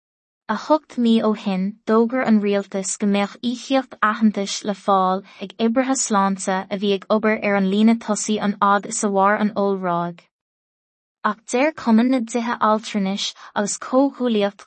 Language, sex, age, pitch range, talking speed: English, female, 20-39, 195-230 Hz, 145 wpm